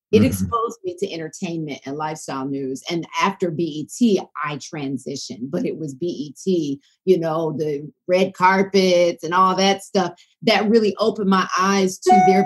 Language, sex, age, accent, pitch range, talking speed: English, female, 40-59, American, 165-200 Hz, 160 wpm